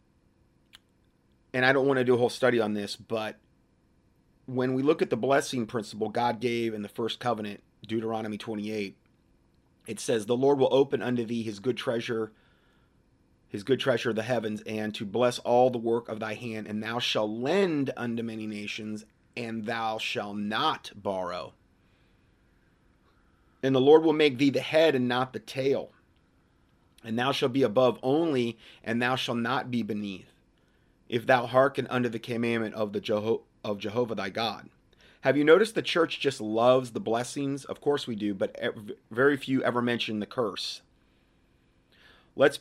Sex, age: male, 30-49